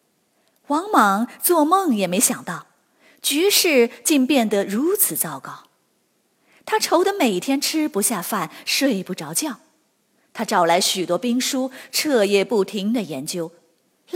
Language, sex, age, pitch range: Chinese, female, 30-49, 185-300 Hz